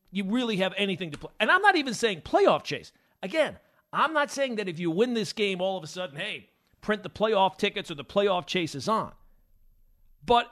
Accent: American